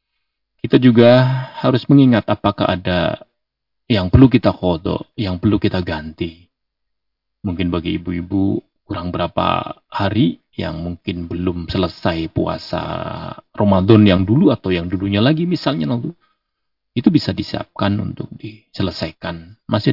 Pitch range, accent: 85-105 Hz, native